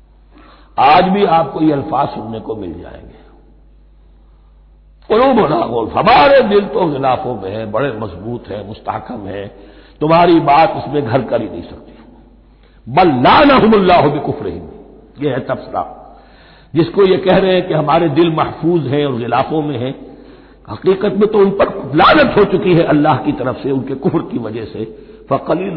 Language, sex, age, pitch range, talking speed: Hindi, male, 60-79, 115-180 Hz, 170 wpm